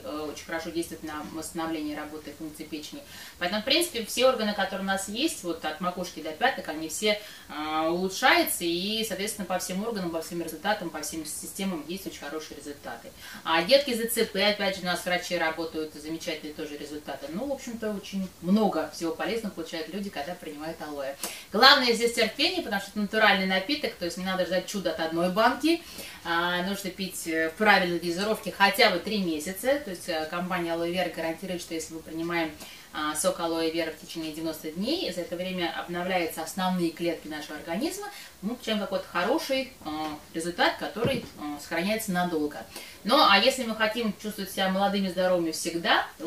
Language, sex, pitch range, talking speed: Russian, female, 160-200 Hz, 175 wpm